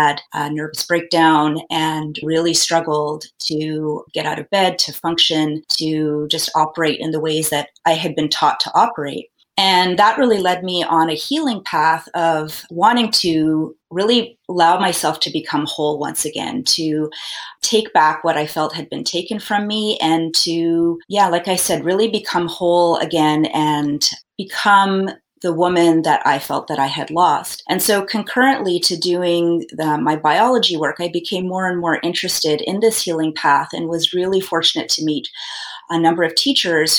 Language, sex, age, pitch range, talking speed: English, female, 30-49, 155-180 Hz, 175 wpm